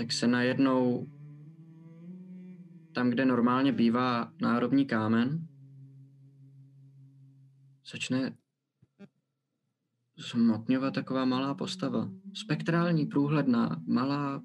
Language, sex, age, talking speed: Czech, male, 20-39, 70 wpm